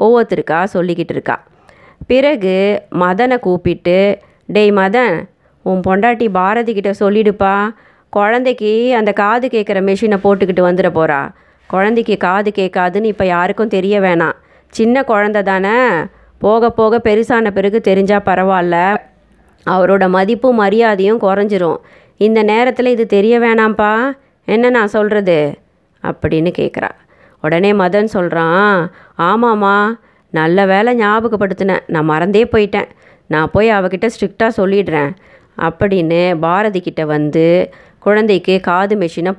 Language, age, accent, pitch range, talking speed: Tamil, 20-39, native, 175-215 Hz, 110 wpm